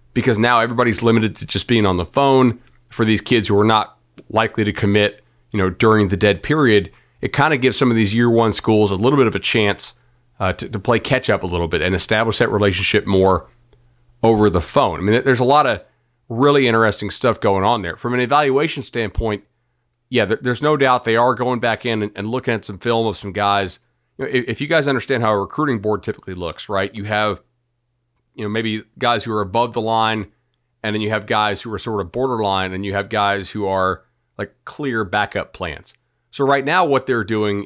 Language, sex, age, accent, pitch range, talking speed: English, male, 40-59, American, 100-125 Hz, 225 wpm